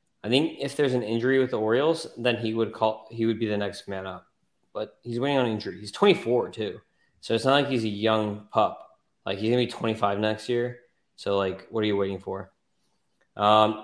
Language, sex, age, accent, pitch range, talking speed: English, male, 20-39, American, 105-120 Hz, 220 wpm